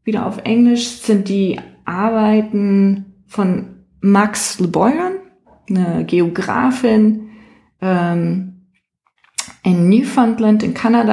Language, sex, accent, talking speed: German, female, German, 85 wpm